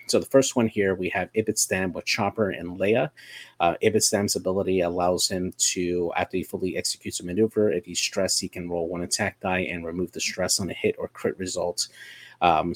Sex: male